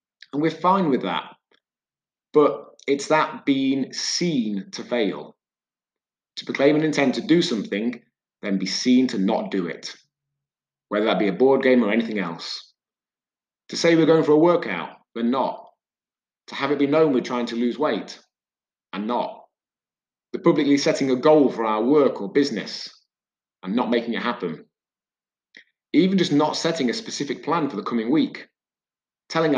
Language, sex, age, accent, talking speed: English, male, 30-49, British, 170 wpm